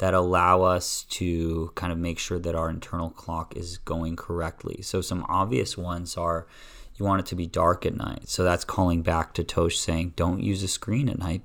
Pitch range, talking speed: 85-100 Hz, 215 wpm